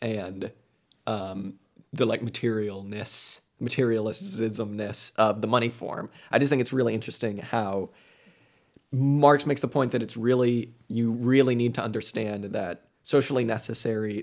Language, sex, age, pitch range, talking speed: English, male, 30-49, 105-125 Hz, 135 wpm